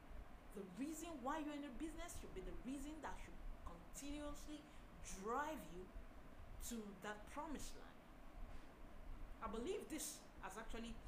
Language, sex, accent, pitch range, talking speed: English, female, Nigerian, 190-280 Hz, 135 wpm